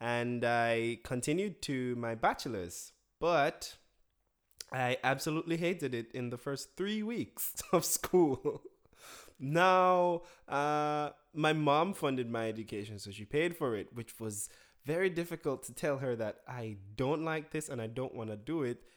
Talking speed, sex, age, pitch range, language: 155 wpm, male, 20-39, 115-165 Hz, English